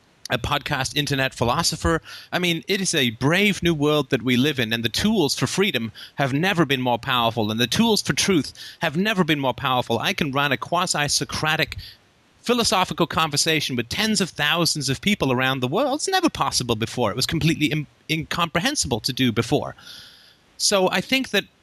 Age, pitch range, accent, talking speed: 30-49, 125-170 Hz, American, 185 wpm